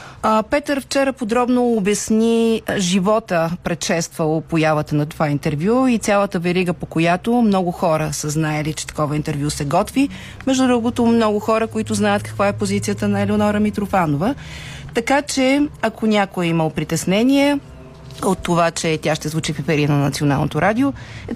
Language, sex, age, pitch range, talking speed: Bulgarian, female, 40-59, 165-220 Hz, 150 wpm